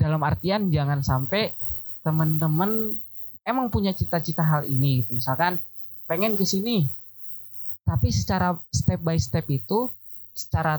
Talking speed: 120 wpm